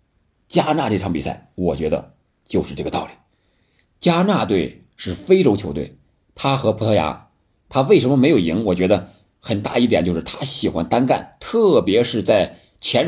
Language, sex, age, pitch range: Chinese, male, 50-69, 90-130 Hz